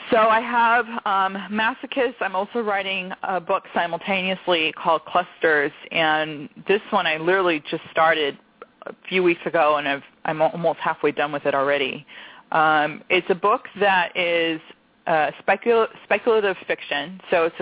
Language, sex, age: English, female, 20-39